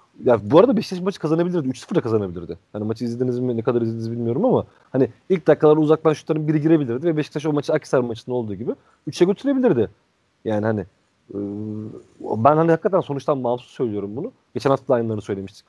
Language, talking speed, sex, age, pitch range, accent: Turkish, 185 wpm, male, 40-59, 120-175 Hz, native